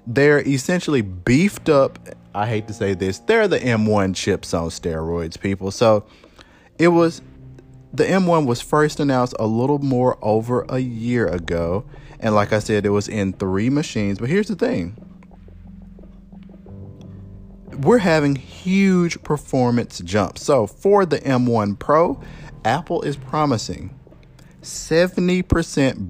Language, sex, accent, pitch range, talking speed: English, male, American, 100-145 Hz, 135 wpm